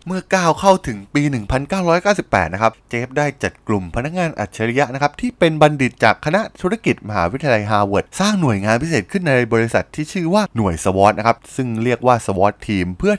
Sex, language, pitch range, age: male, Thai, 105-155 Hz, 20-39